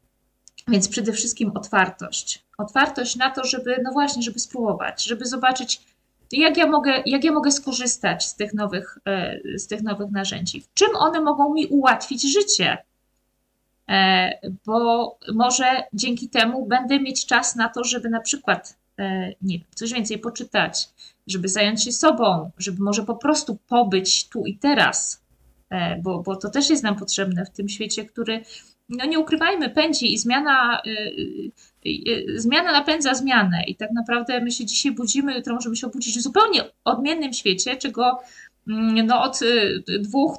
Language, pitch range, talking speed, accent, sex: Polish, 210-270 Hz, 150 wpm, native, female